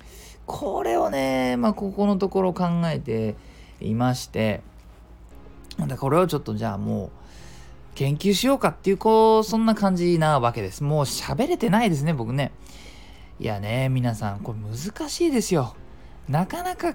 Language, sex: Japanese, male